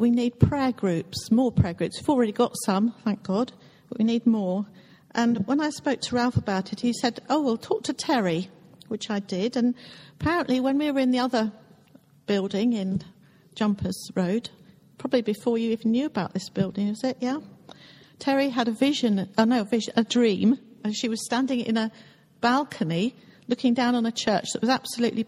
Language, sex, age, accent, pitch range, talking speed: English, female, 50-69, British, 205-245 Hz, 190 wpm